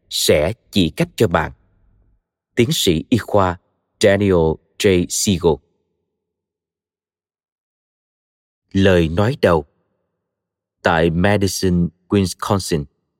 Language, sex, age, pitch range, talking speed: Vietnamese, male, 20-39, 85-110 Hz, 80 wpm